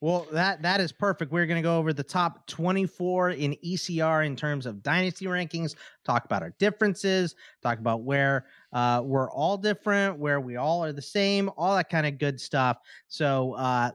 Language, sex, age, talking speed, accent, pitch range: English, male, 30-49, 195 wpm, American, 130-180 Hz